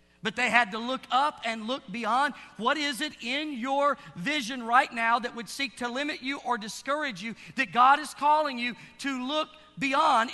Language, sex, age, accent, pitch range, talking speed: English, male, 50-69, American, 190-290 Hz, 195 wpm